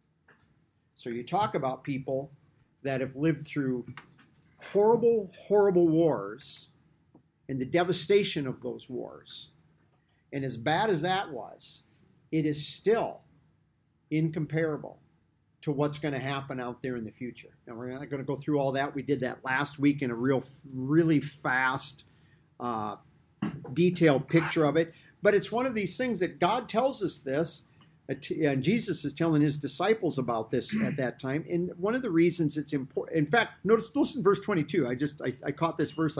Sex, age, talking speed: male, 50-69, 170 wpm